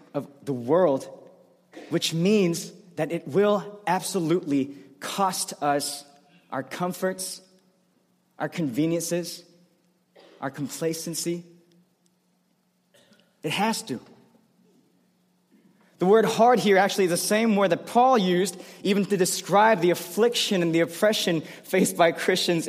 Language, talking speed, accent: English, 115 wpm, American